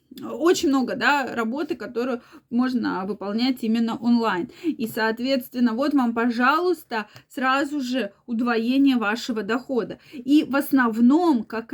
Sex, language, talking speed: female, Russian, 120 wpm